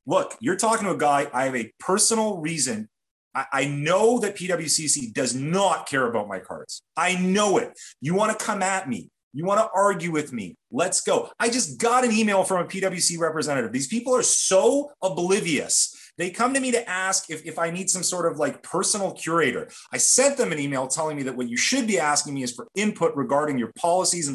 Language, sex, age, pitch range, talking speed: English, male, 30-49, 145-215 Hz, 220 wpm